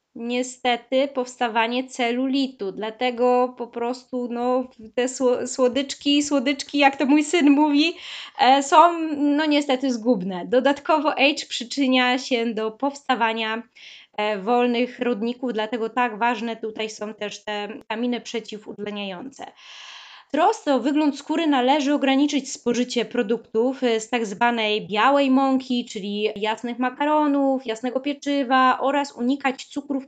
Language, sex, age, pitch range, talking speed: Polish, female, 20-39, 220-275 Hz, 110 wpm